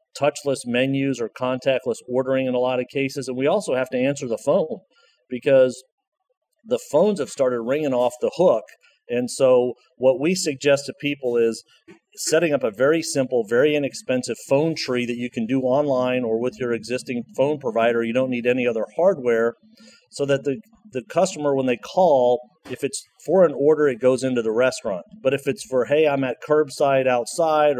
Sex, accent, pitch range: male, American, 125-145 Hz